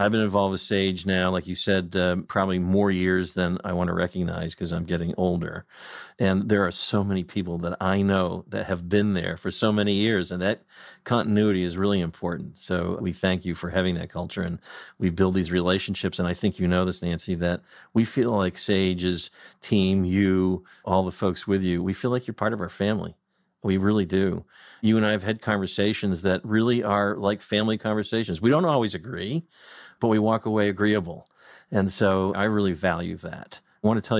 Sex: male